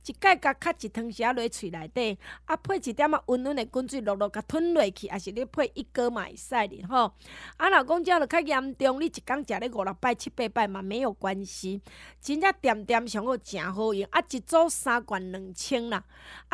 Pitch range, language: 205-285 Hz, Chinese